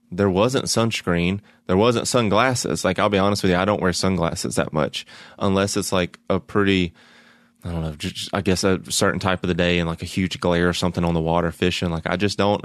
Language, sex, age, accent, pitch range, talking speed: English, male, 20-39, American, 85-95 Hz, 235 wpm